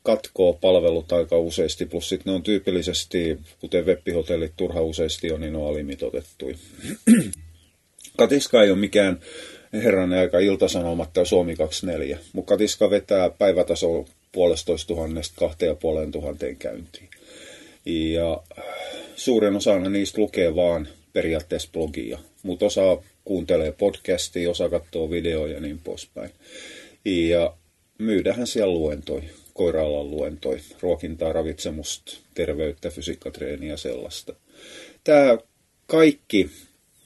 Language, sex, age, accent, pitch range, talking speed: Finnish, male, 30-49, native, 80-105 Hz, 110 wpm